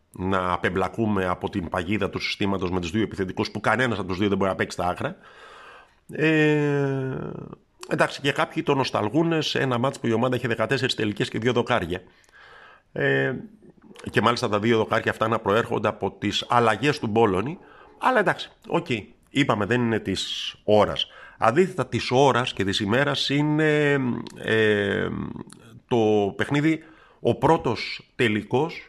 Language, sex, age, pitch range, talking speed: Greek, male, 50-69, 100-135 Hz, 155 wpm